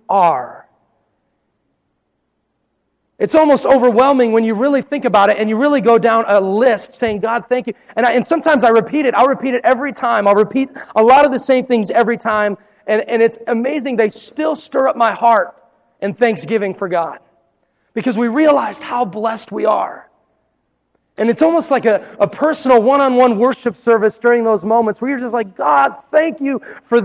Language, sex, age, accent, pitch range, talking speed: English, male, 30-49, American, 215-265 Hz, 190 wpm